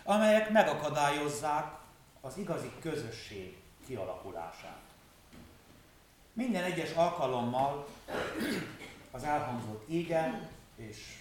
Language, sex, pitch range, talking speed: Hungarian, male, 115-160 Hz, 70 wpm